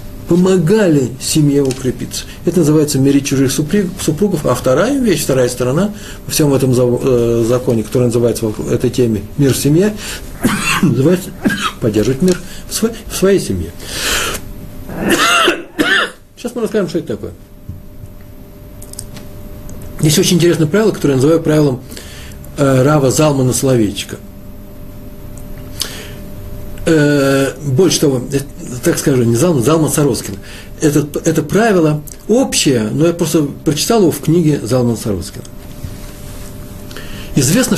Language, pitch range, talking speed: Russian, 115-170 Hz, 110 wpm